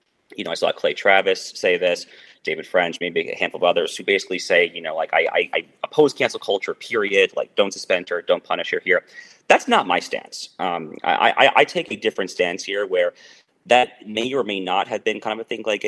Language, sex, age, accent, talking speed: English, male, 30-49, American, 235 wpm